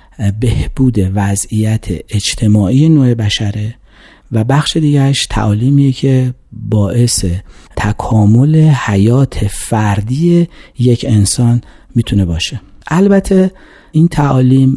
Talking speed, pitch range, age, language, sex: 85 wpm, 110-140 Hz, 40-59, Persian, male